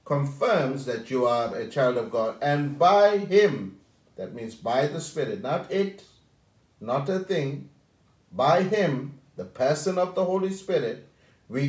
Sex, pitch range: male, 130-190 Hz